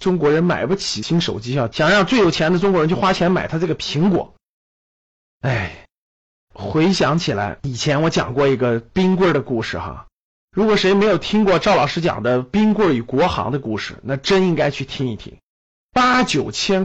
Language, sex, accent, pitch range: Chinese, male, native, 140-215 Hz